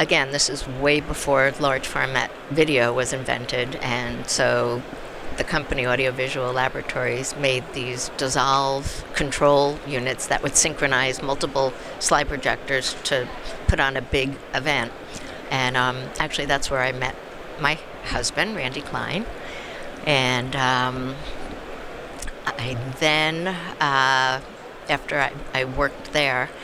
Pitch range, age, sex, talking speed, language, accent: 130-145 Hz, 60-79, female, 120 wpm, English, American